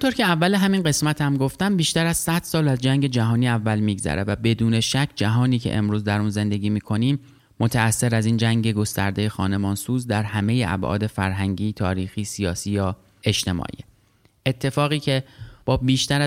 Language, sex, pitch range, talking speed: Persian, male, 105-125 Hz, 160 wpm